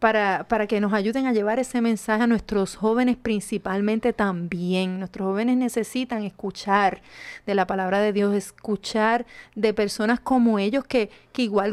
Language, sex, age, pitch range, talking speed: Spanish, female, 30-49, 200-245 Hz, 160 wpm